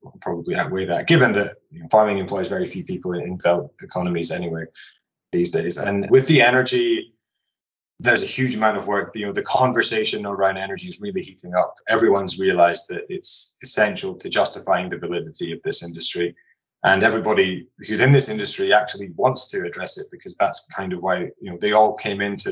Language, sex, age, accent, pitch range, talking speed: English, male, 20-39, British, 90-130 Hz, 195 wpm